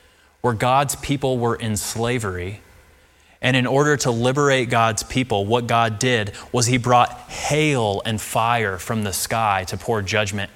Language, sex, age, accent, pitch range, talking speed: English, male, 20-39, American, 105-125 Hz, 160 wpm